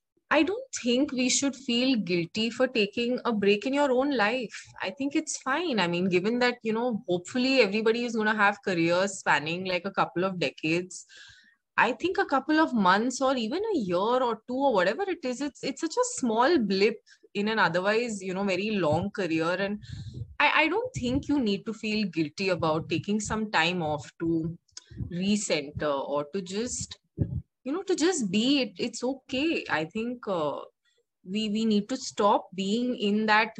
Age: 20-39